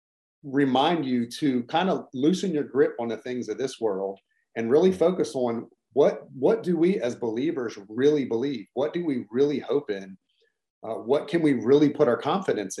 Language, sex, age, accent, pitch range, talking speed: English, male, 40-59, American, 115-140 Hz, 185 wpm